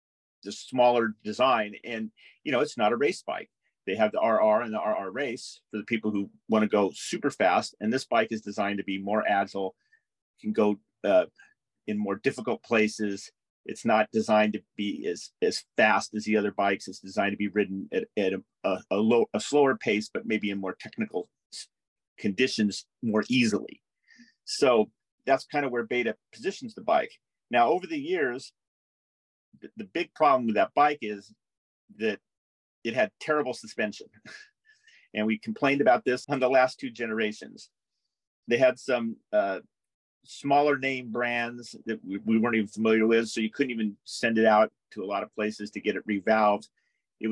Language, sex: English, male